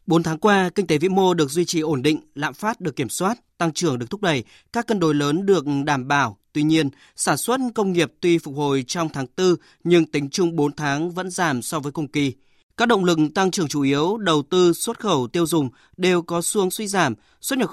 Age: 20-39